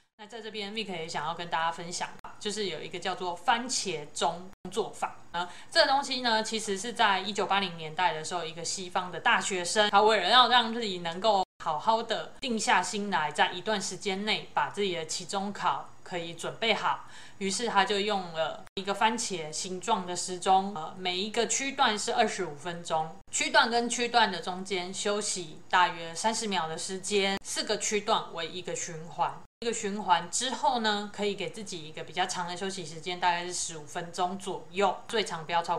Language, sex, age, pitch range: Chinese, female, 20-39, 170-215 Hz